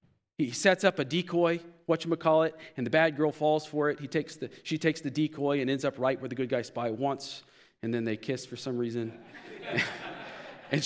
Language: English